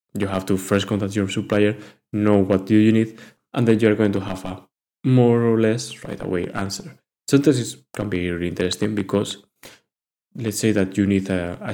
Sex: male